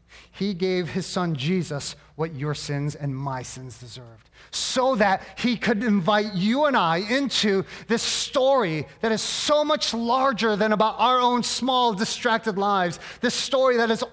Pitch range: 165-220 Hz